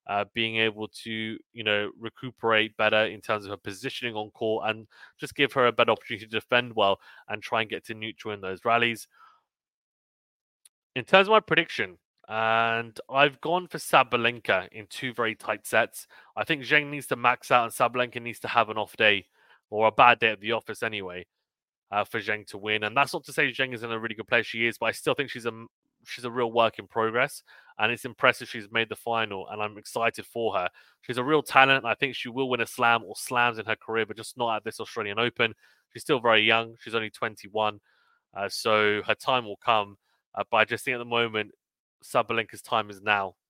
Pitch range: 110-125 Hz